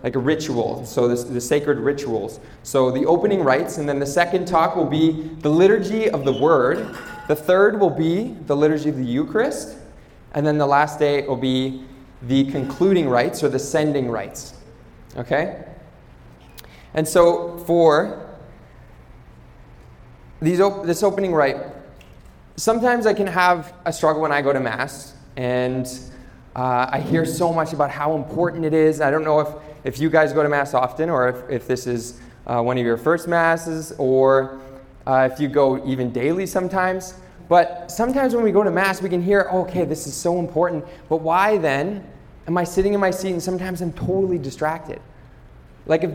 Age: 20-39